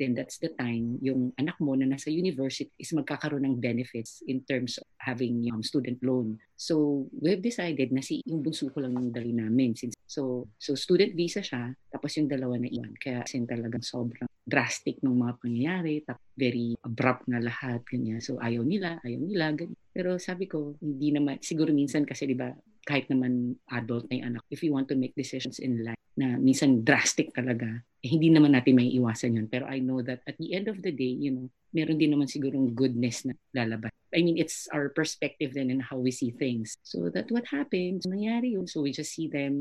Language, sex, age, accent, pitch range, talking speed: Filipino, female, 40-59, native, 125-155 Hz, 210 wpm